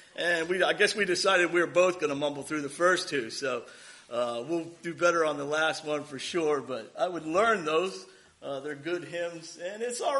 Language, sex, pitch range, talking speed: English, male, 160-215 Hz, 230 wpm